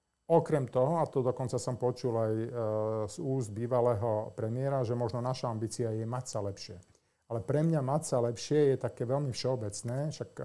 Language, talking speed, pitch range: Slovak, 185 wpm, 115-140 Hz